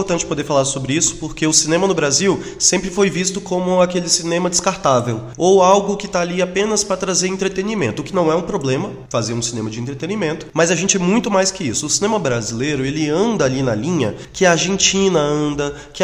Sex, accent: male, Brazilian